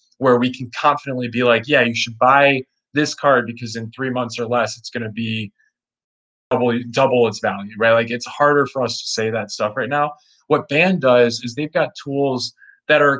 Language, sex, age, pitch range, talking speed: English, male, 20-39, 115-140 Hz, 215 wpm